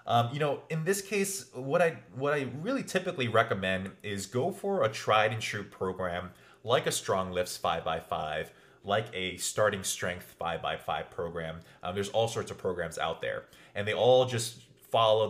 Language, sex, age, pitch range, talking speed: English, male, 30-49, 100-130 Hz, 190 wpm